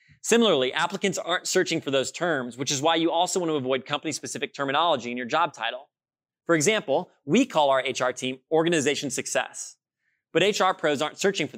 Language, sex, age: English, male, 20-39